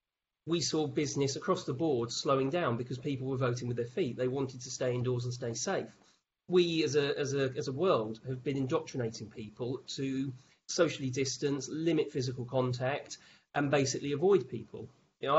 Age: 40-59